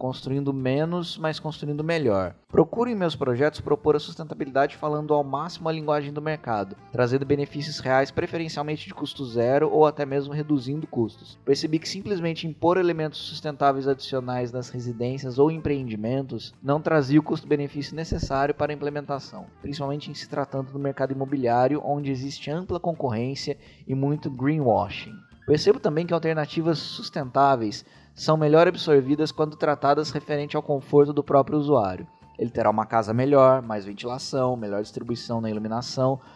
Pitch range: 130-150 Hz